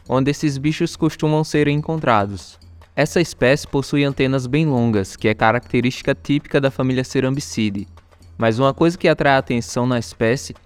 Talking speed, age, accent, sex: 160 wpm, 20-39, Brazilian, male